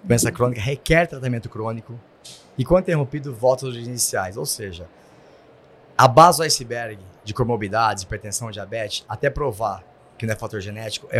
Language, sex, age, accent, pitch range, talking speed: Portuguese, male, 20-39, Brazilian, 105-135 Hz, 155 wpm